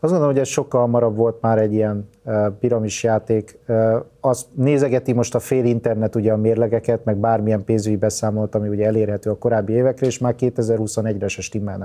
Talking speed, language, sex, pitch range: 165 wpm, Hungarian, male, 110-130 Hz